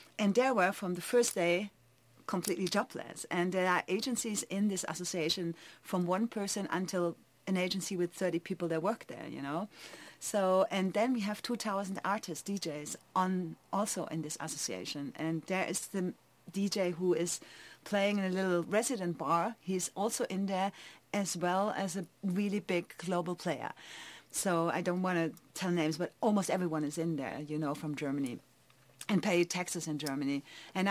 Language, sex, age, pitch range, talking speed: Greek, female, 40-59, 165-195 Hz, 175 wpm